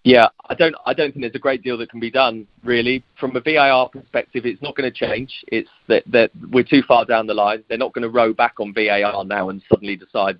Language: English